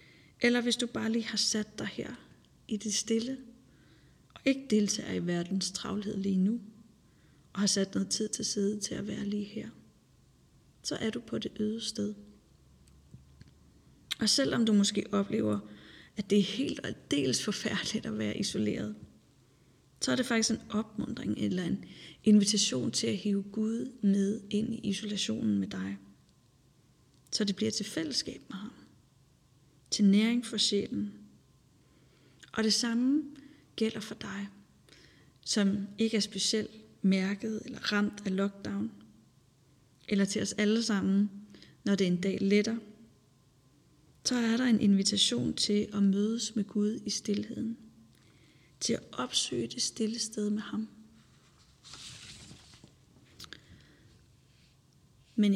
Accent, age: native, 30-49